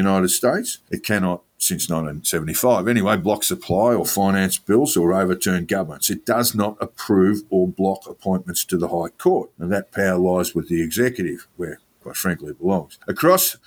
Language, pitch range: English, 90-110 Hz